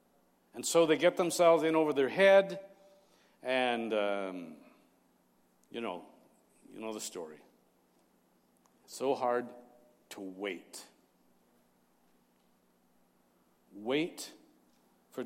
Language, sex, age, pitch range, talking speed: English, male, 50-69, 110-145 Hz, 90 wpm